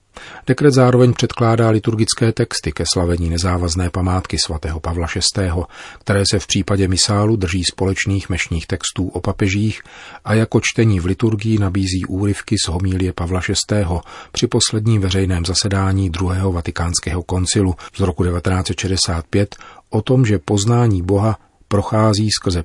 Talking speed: 135 wpm